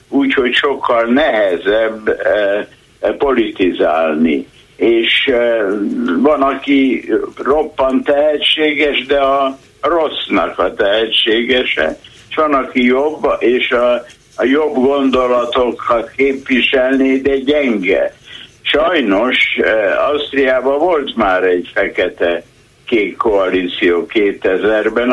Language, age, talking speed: Hungarian, 60-79, 80 wpm